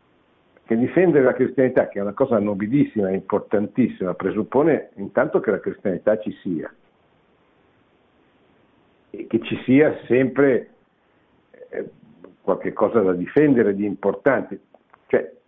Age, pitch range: 60-79, 100-130 Hz